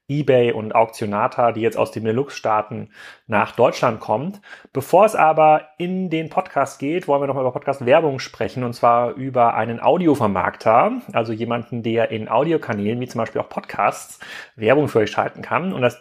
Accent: German